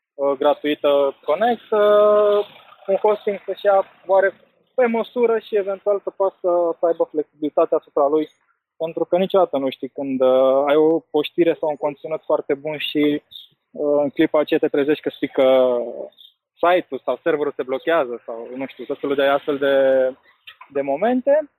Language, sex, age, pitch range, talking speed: Romanian, male, 20-39, 145-190 Hz, 155 wpm